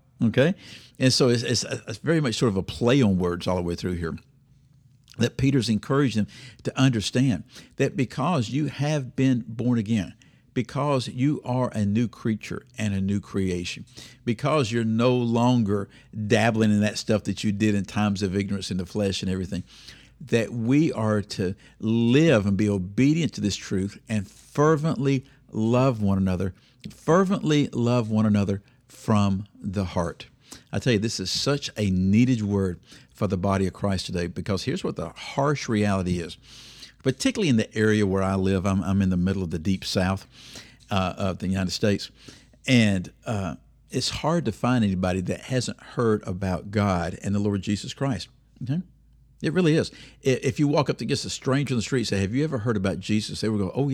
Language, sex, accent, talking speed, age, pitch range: English, male, American, 190 wpm, 50-69, 95-130 Hz